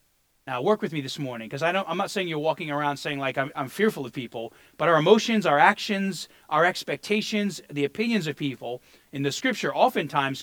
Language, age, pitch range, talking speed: English, 40-59, 140-195 Hz, 200 wpm